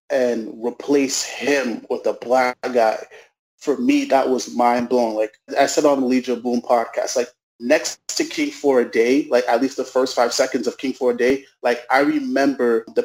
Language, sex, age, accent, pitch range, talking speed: English, male, 20-39, American, 120-150 Hz, 200 wpm